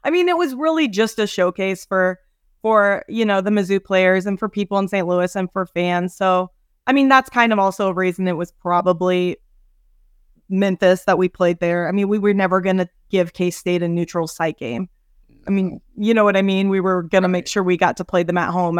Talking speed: 235 wpm